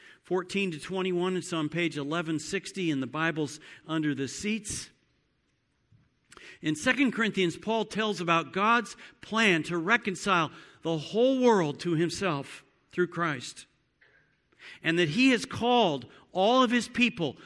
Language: English